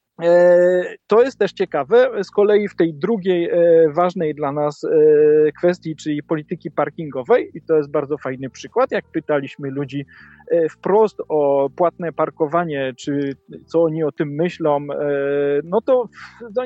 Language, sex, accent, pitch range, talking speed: Polish, male, native, 165-225 Hz, 135 wpm